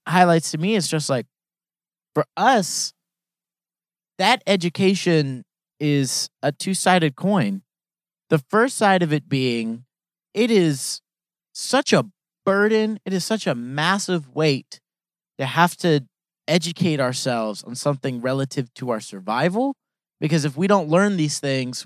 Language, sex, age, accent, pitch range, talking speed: English, male, 30-49, American, 145-195 Hz, 135 wpm